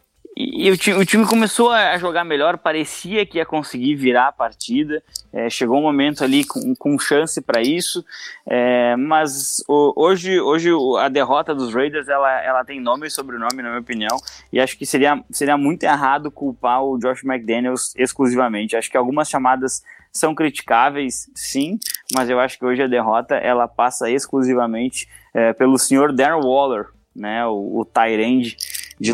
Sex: male